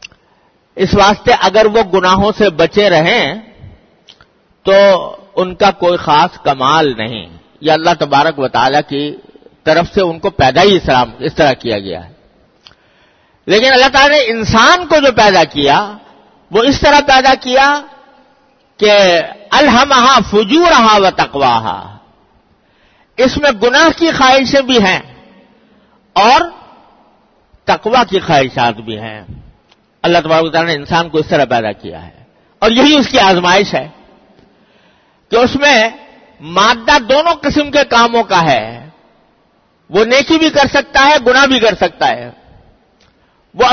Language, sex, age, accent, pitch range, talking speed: English, male, 50-69, Indian, 180-270 Hz, 130 wpm